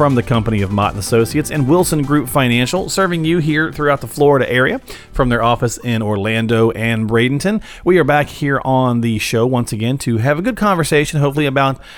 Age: 40-59